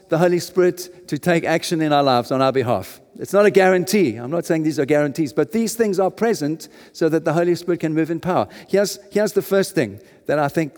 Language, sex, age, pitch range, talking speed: English, male, 50-69, 150-205 Hz, 245 wpm